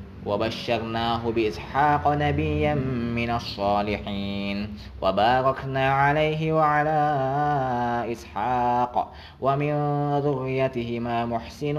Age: 20-39